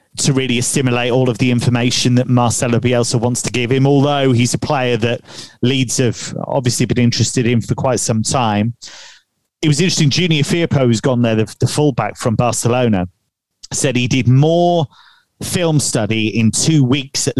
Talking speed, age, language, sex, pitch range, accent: 175 wpm, 30-49, English, male, 120-140 Hz, British